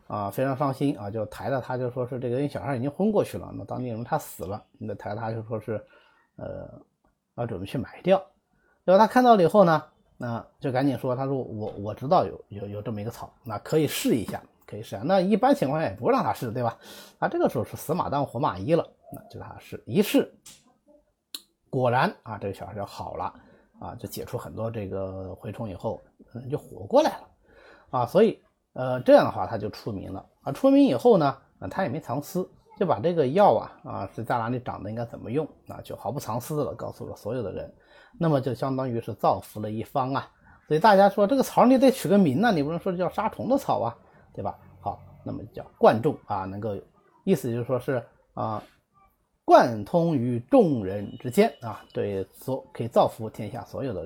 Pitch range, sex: 110-180 Hz, male